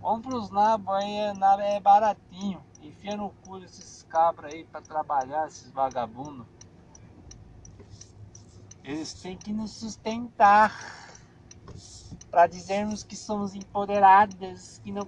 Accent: Brazilian